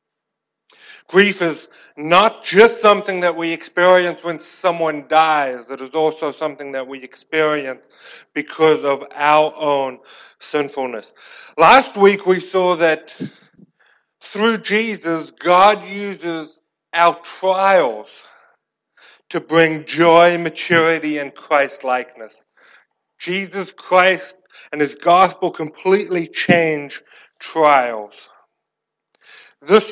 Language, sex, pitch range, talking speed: English, male, 150-190 Hz, 100 wpm